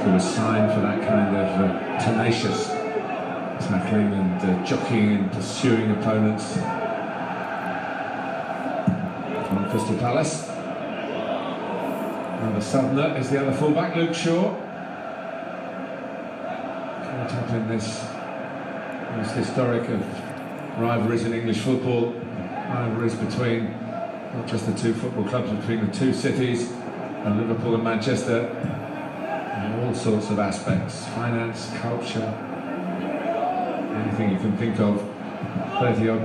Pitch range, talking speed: 105-125 Hz, 110 wpm